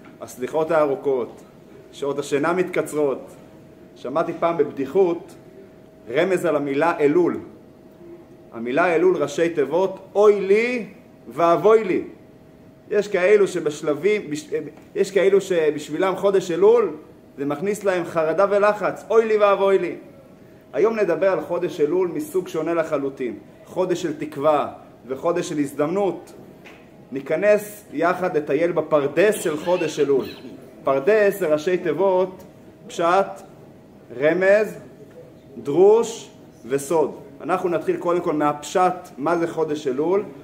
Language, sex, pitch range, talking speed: Hebrew, male, 150-205 Hz, 110 wpm